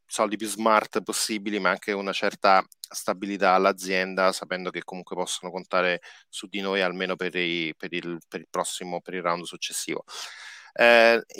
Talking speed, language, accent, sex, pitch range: 145 wpm, Italian, native, male, 95-110 Hz